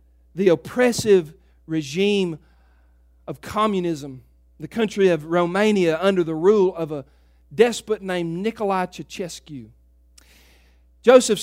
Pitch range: 140-220 Hz